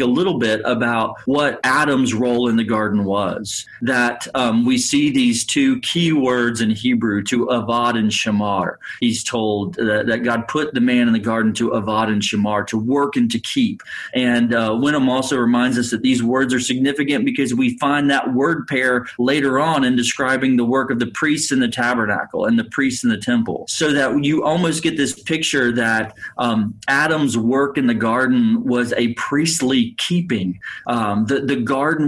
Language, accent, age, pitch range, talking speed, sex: English, American, 30-49, 115-150 Hz, 190 wpm, male